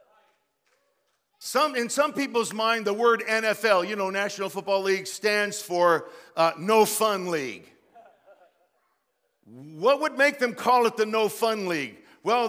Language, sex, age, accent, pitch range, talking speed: English, male, 50-69, American, 175-225 Hz, 145 wpm